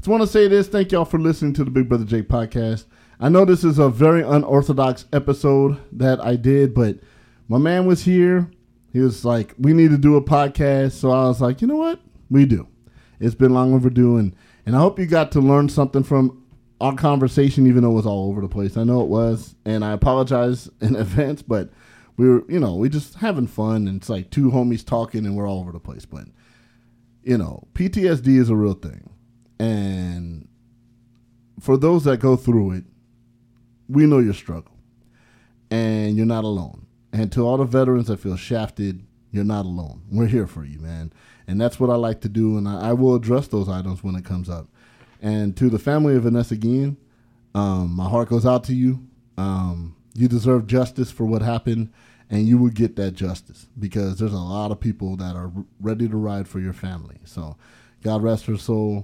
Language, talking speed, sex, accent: English, 210 wpm, male, American